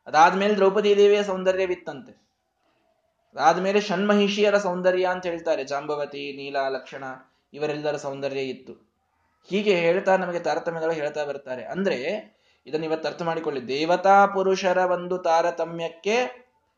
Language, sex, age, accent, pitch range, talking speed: Kannada, male, 20-39, native, 145-190 Hz, 105 wpm